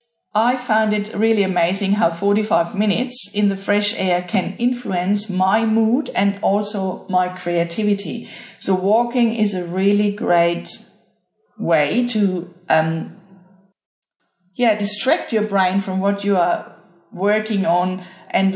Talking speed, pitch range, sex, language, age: 130 wpm, 185-225 Hz, female, English, 50-69